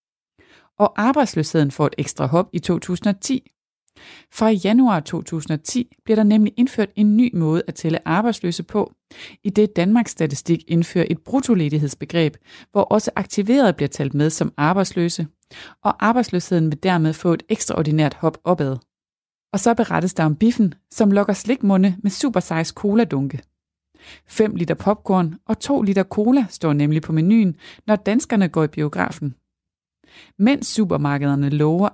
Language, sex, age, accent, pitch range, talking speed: Danish, female, 30-49, native, 160-210 Hz, 145 wpm